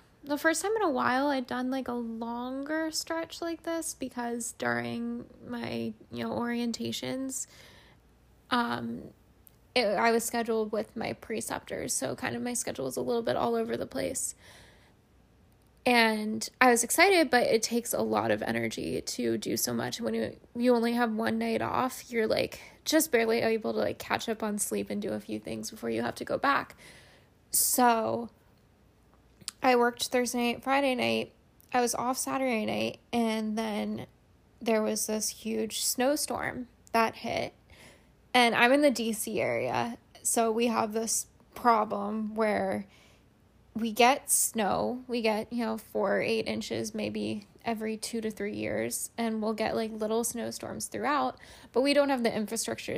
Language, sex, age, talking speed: English, female, 10-29, 170 wpm